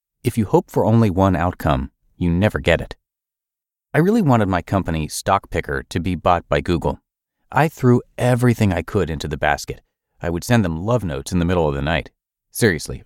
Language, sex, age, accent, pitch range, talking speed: English, male, 40-59, American, 85-120 Hz, 200 wpm